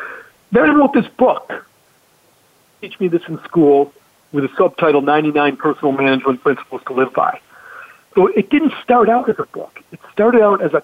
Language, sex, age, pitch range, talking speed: English, male, 50-69, 155-220 Hz, 185 wpm